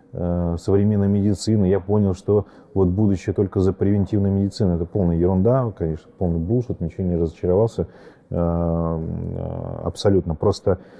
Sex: male